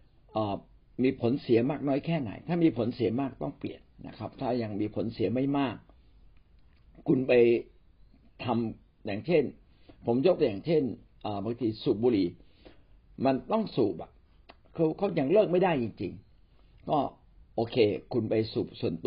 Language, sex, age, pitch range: Thai, male, 60-79, 105-140 Hz